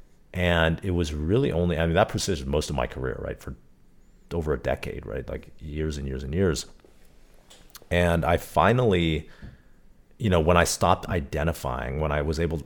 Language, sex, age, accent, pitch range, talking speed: English, male, 40-59, American, 70-85 Hz, 180 wpm